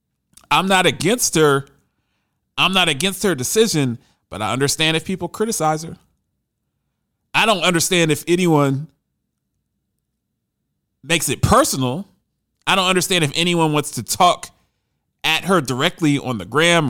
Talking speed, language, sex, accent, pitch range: 135 wpm, English, male, American, 130-190 Hz